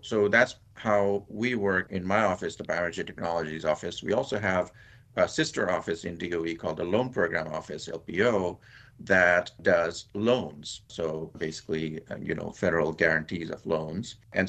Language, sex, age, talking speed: English, male, 50-69, 155 wpm